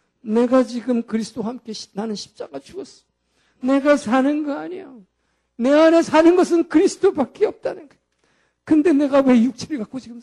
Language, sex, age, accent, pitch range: Korean, male, 50-69, native, 165-245 Hz